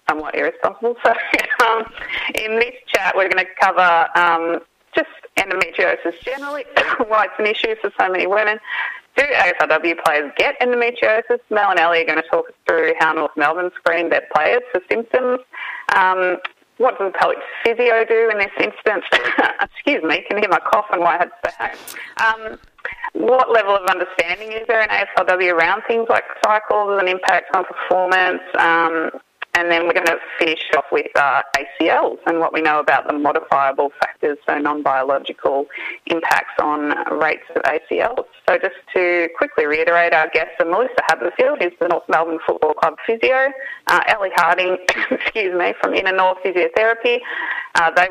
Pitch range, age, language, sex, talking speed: 165-235 Hz, 30-49, English, female, 170 wpm